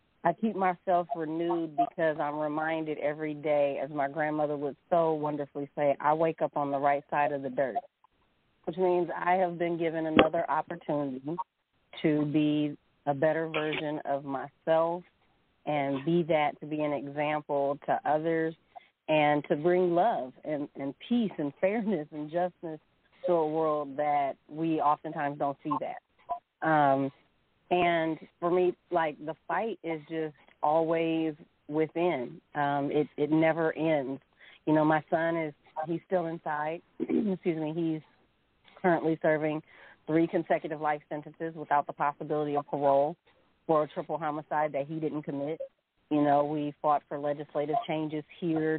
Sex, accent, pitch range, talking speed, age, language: female, American, 145-165 Hz, 155 wpm, 40-59, English